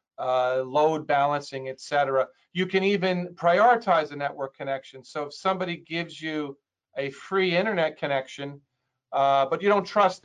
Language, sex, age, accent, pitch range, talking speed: English, male, 40-59, American, 140-170 Hz, 145 wpm